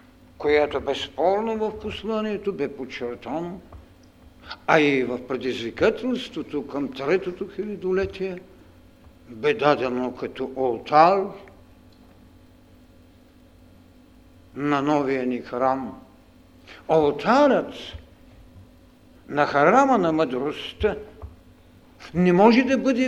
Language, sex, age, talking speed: Bulgarian, male, 60-79, 80 wpm